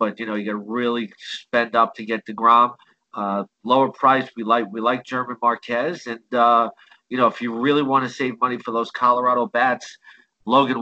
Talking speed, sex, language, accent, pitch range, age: 205 wpm, male, English, American, 110-125 Hz, 40-59